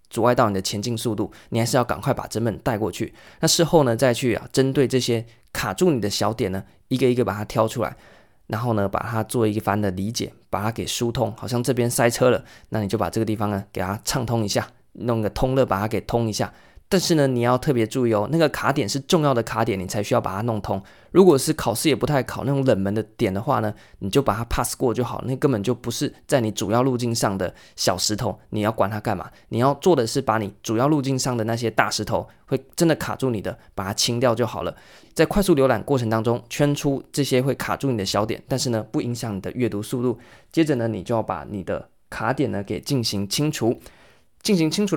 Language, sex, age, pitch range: Chinese, male, 20-39, 110-135 Hz